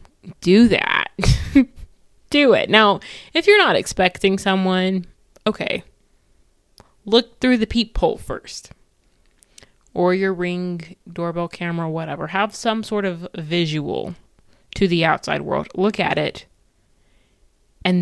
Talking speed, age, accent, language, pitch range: 115 wpm, 20-39, American, English, 170-210 Hz